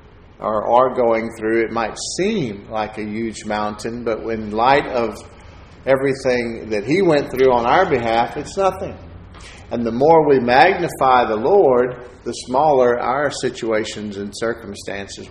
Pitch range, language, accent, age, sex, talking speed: 110-130 Hz, English, American, 50-69, male, 150 wpm